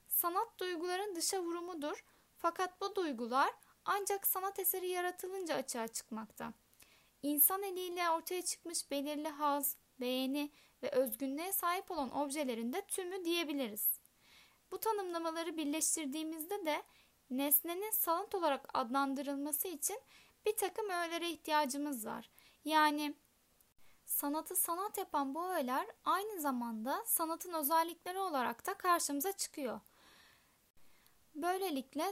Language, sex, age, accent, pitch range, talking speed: Turkish, female, 10-29, native, 285-365 Hz, 105 wpm